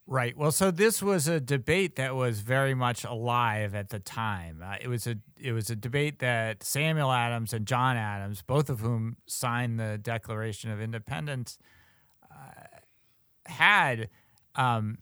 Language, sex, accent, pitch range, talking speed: English, male, American, 110-140 Hz, 160 wpm